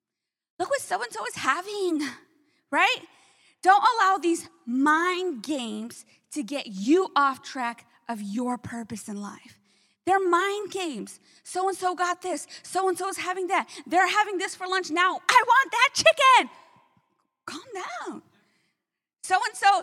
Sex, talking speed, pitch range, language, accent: female, 135 wpm, 265-370 Hz, English, American